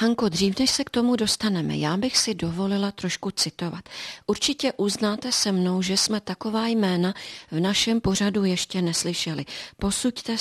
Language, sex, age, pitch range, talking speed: Czech, female, 40-59, 185-225 Hz, 155 wpm